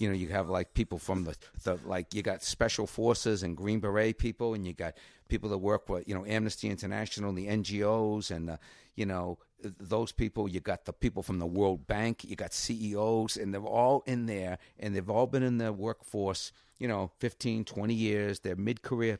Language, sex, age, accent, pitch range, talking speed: English, male, 50-69, American, 95-115 Hz, 215 wpm